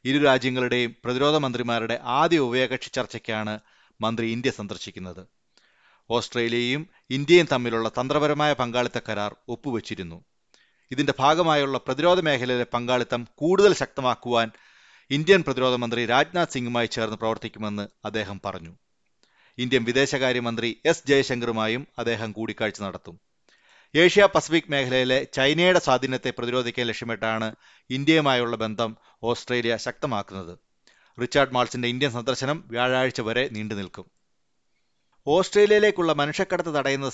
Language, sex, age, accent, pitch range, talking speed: Malayalam, male, 30-49, native, 115-140 Hz, 100 wpm